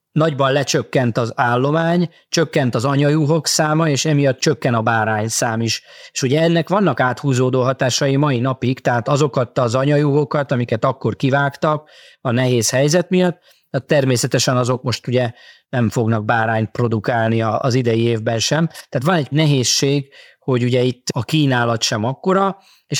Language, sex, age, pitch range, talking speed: Hungarian, male, 20-39, 120-145 Hz, 155 wpm